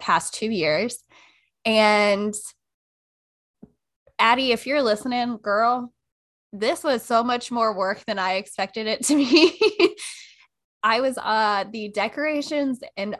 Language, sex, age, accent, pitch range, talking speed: English, female, 10-29, American, 185-255 Hz, 125 wpm